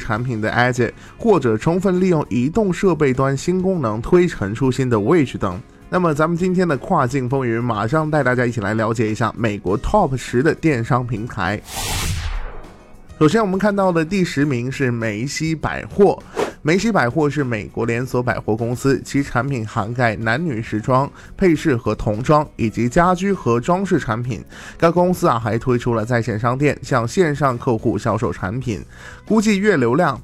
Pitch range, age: 115-165 Hz, 20-39